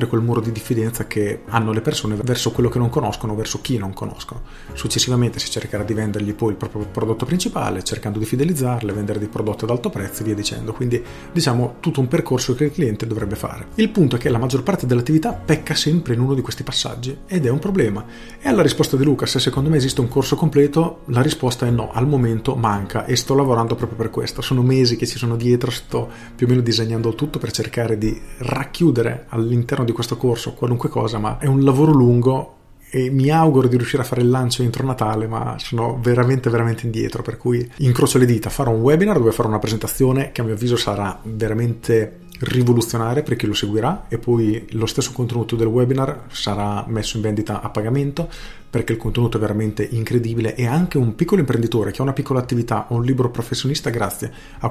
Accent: native